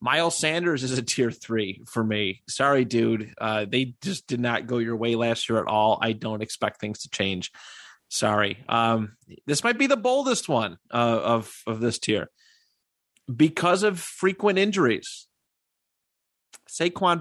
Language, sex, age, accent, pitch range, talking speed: English, male, 30-49, American, 115-145 Hz, 160 wpm